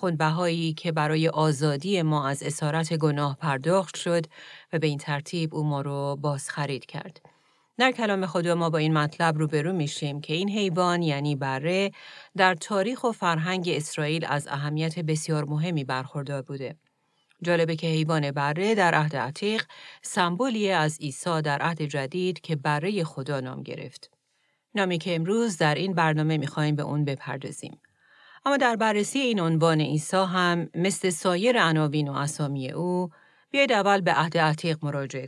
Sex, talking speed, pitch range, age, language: female, 160 wpm, 150-180 Hz, 40-59, Persian